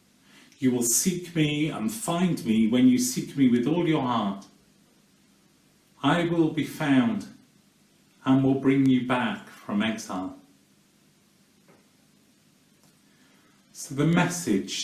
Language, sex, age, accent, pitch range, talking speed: English, male, 40-59, British, 125-190 Hz, 115 wpm